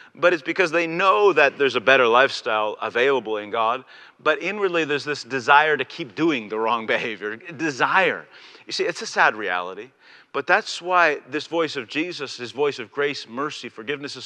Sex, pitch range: male, 150-190 Hz